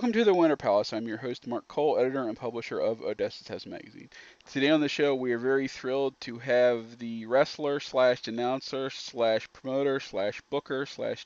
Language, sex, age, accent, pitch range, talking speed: English, male, 40-59, American, 125-145 Hz, 185 wpm